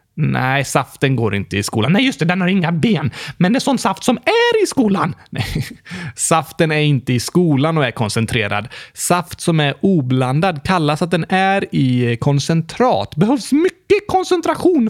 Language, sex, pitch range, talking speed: Swedish, male, 130-210 Hz, 175 wpm